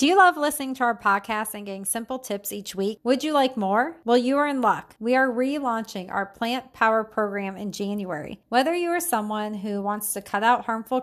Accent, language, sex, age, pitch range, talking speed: American, English, female, 30-49, 205-250 Hz, 225 wpm